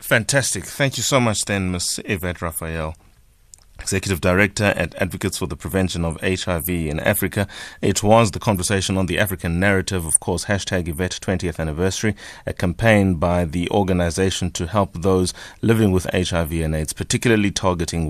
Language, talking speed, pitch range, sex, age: English, 160 wpm, 85-105 Hz, male, 30-49